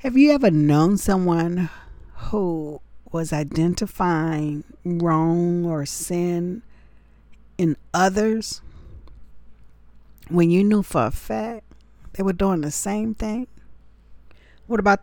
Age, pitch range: 50-69, 130-195 Hz